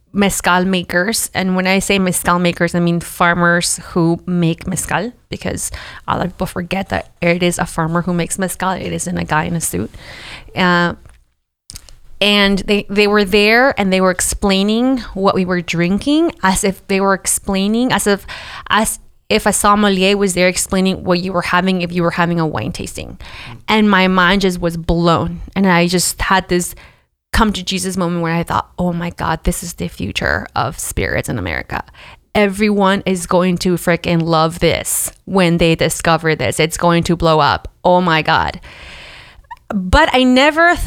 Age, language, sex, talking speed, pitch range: 20-39, English, female, 185 wpm, 170-200 Hz